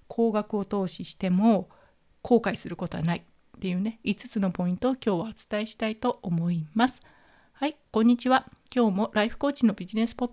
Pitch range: 200-240 Hz